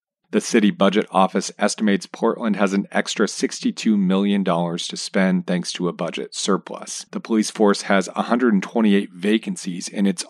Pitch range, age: 95-105 Hz, 40-59